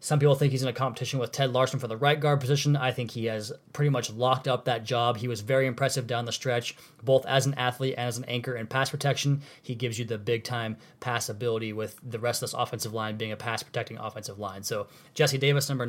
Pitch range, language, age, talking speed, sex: 120-150 Hz, English, 20-39, 245 wpm, male